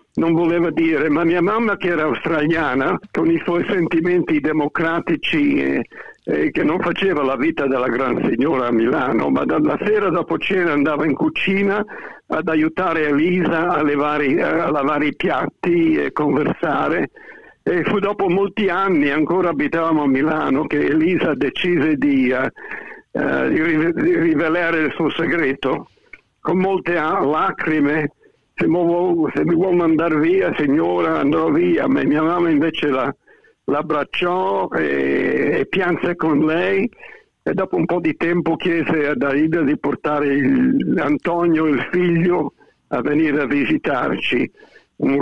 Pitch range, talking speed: 155-195 Hz, 135 wpm